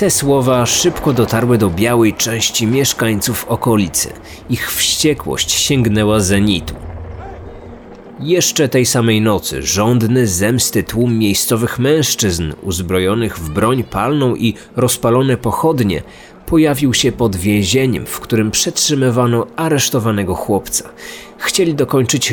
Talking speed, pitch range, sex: 105 wpm, 105-130 Hz, male